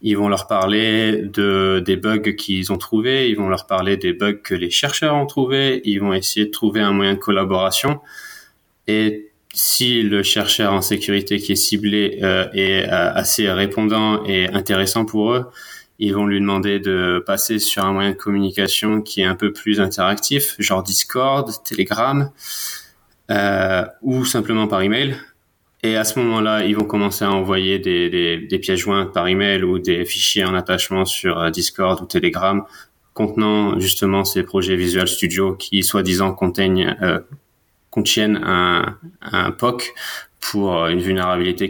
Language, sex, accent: French, male, French